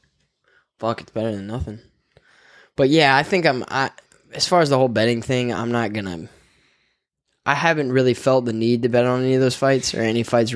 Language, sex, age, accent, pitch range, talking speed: English, male, 10-29, American, 110-130 Hz, 210 wpm